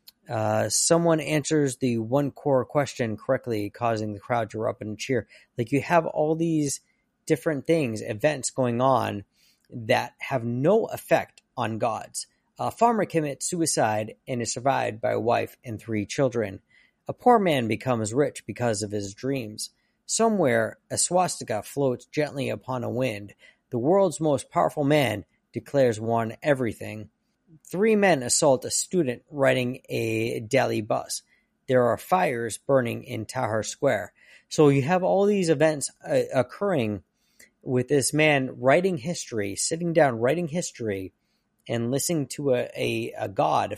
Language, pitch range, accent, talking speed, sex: English, 115-155 Hz, American, 150 wpm, male